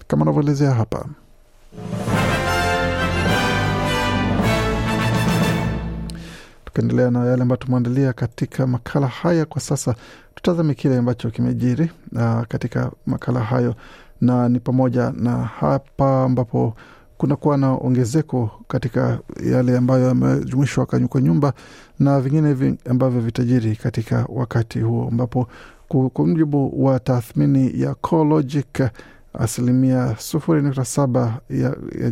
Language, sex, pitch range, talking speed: Swahili, male, 120-135 Hz, 100 wpm